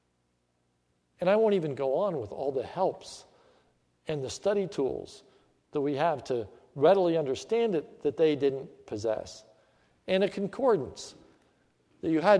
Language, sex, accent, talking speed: English, male, American, 150 wpm